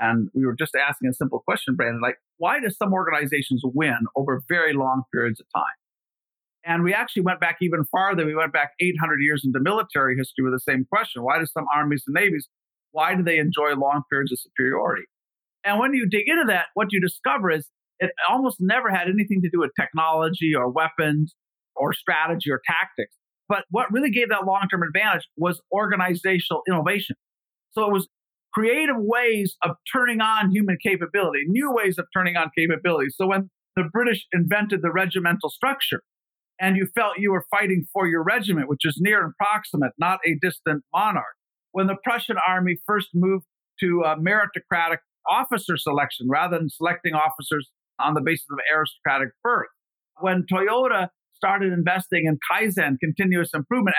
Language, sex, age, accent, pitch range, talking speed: English, male, 50-69, American, 155-200 Hz, 180 wpm